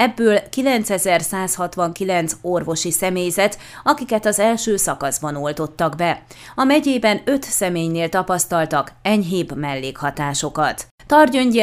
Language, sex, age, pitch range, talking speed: Hungarian, female, 30-49, 165-210 Hz, 95 wpm